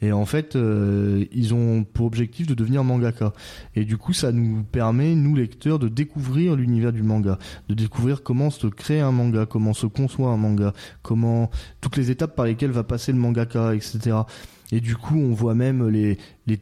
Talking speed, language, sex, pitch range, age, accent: 200 wpm, French, male, 110-140 Hz, 20-39, French